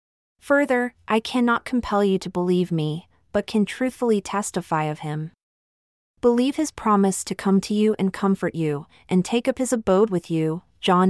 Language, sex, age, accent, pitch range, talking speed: English, female, 30-49, American, 170-215 Hz, 175 wpm